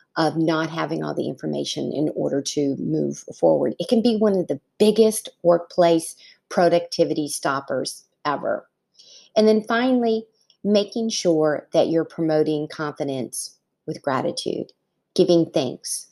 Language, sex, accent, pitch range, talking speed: English, female, American, 160-195 Hz, 130 wpm